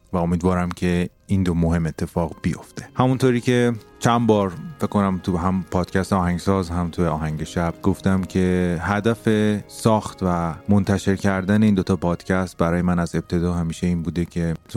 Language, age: Persian, 30-49